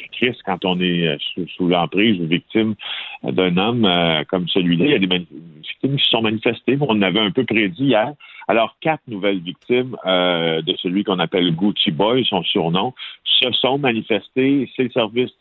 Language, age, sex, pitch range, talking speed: French, 50-69, male, 95-120 Hz, 185 wpm